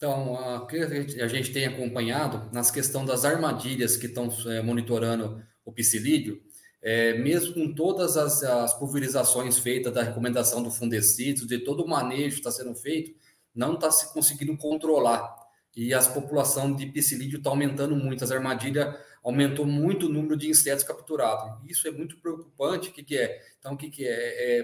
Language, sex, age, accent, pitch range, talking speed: Portuguese, male, 20-39, Brazilian, 125-155 Hz, 170 wpm